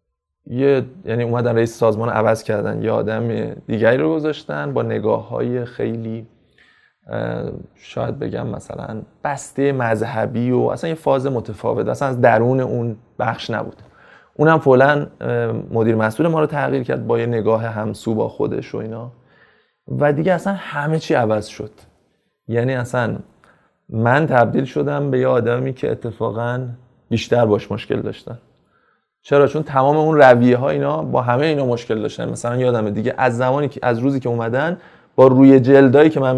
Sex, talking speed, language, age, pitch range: male, 155 wpm, Persian, 20-39, 115-140 Hz